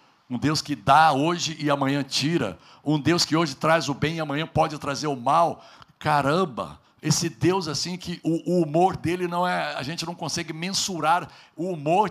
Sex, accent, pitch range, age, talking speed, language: male, Brazilian, 145-185 Hz, 60-79, 195 wpm, Portuguese